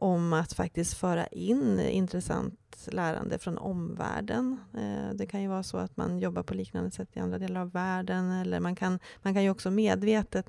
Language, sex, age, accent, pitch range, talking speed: Swedish, female, 30-49, native, 120-200 Hz, 185 wpm